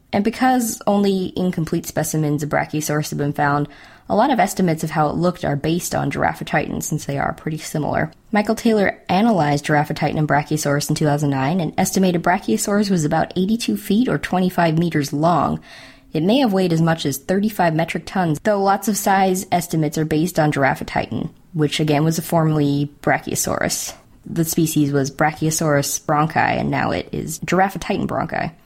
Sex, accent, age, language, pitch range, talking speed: female, American, 20-39, English, 150-190 Hz, 175 wpm